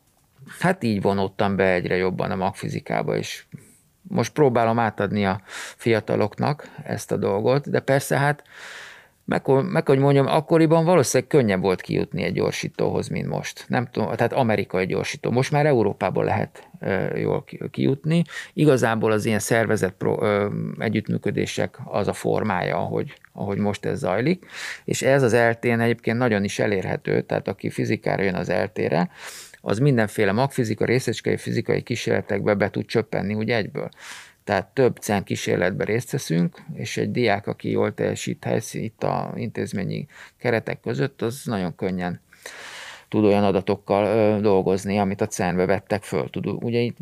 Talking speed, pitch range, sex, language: 145 wpm, 100-120 Hz, male, Hungarian